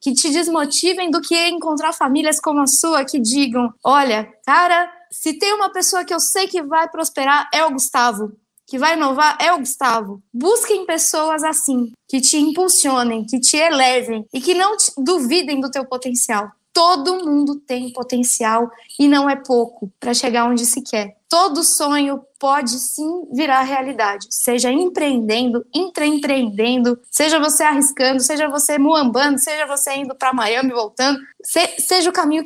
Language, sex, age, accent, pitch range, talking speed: Portuguese, female, 20-39, Brazilian, 240-305 Hz, 165 wpm